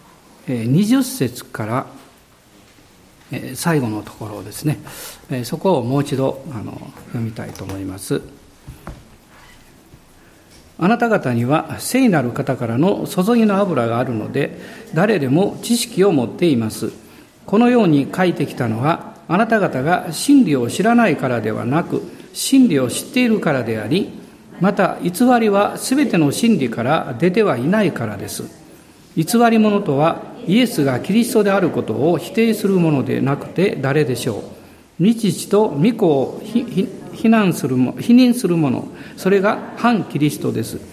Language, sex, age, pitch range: Japanese, male, 50-69, 140-220 Hz